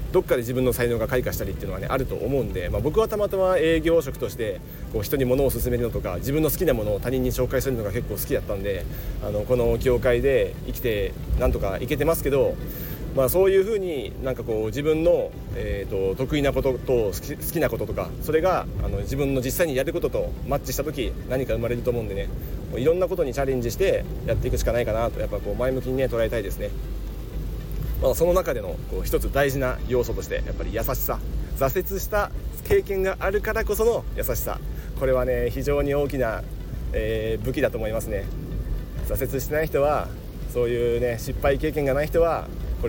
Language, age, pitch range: Japanese, 40-59, 115-150 Hz